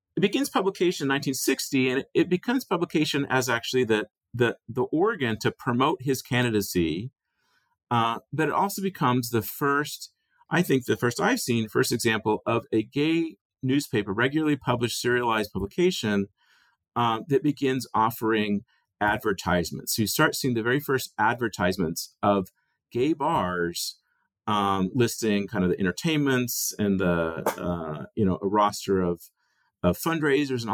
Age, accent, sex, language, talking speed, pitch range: 40-59, American, male, English, 145 wpm, 105-135 Hz